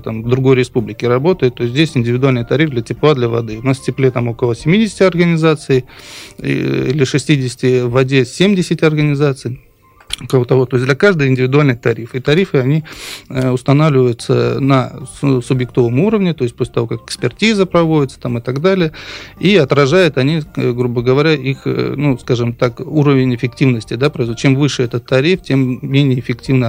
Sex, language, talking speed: male, Russian, 155 wpm